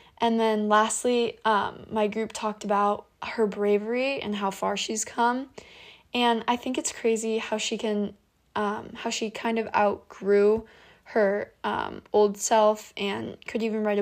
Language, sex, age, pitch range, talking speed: English, female, 10-29, 200-225 Hz, 160 wpm